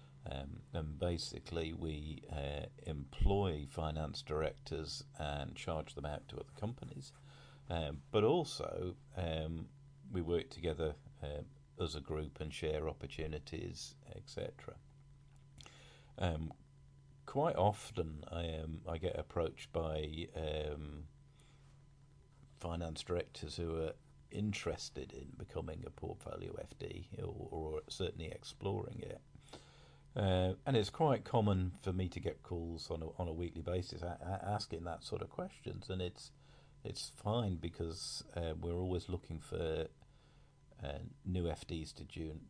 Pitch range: 80-105 Hz